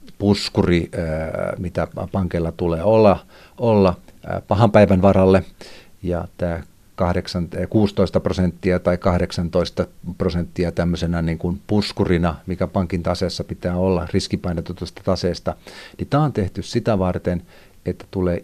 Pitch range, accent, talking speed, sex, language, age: 90-110 Hz, native, 115 wpm, male, Finnish, 50-69